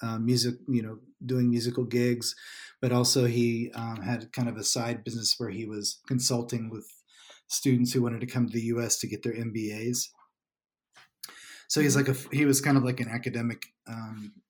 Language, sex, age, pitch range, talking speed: English, male, 30-49, 110-125 Hz, 190 wpm